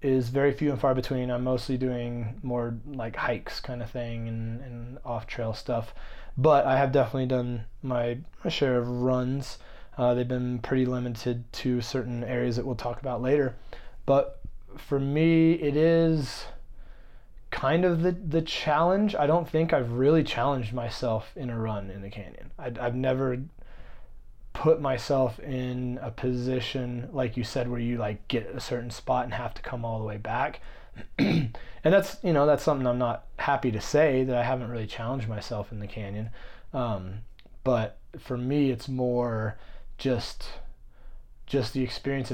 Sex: male